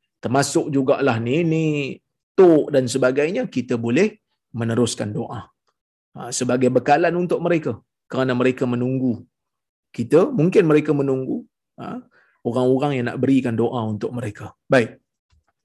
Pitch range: 130-195 Hz